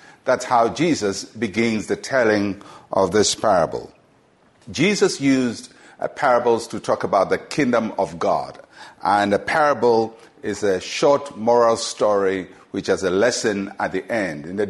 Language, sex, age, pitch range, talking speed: English, male, 50-69, 100-130 Hz, 145 wpm